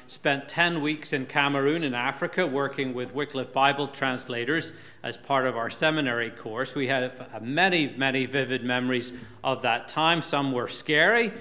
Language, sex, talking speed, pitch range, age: English, male, 160 wpm, 135-175 Hz, 40-59